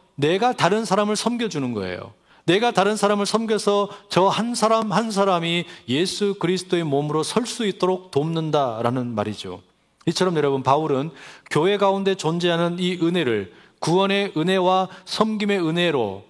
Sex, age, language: male, 30-49, Korean